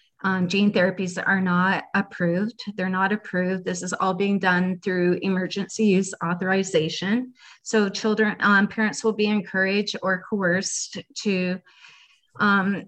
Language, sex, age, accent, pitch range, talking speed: English, female, 30-49, American, 185-210 Hz, 135 wpm